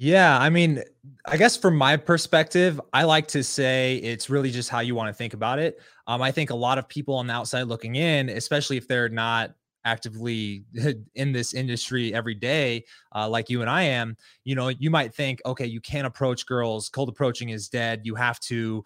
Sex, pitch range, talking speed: male, 120-145 Hz, 215 wpm